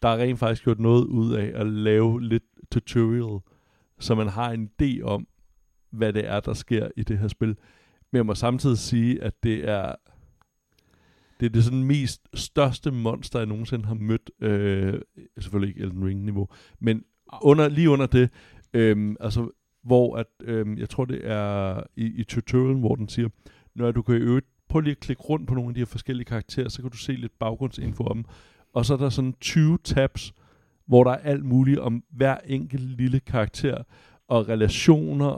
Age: 60-79